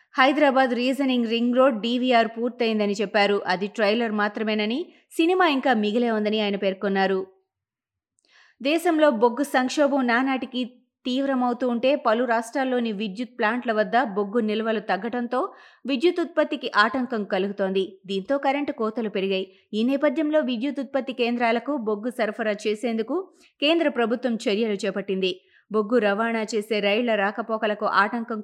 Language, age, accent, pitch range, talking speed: Telugu, 20-39, native, 215-260 Hz, 115 wpm